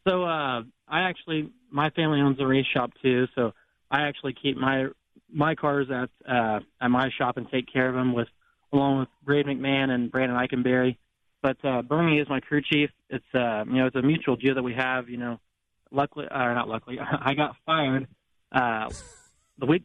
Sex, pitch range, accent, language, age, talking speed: male, 120-140 Hz, American, English, 20-39, 200 wpm